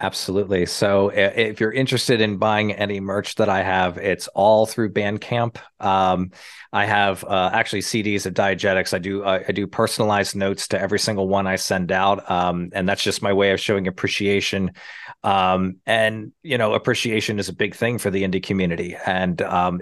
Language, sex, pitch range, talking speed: English, male, 95-110 Hz, 190 wpm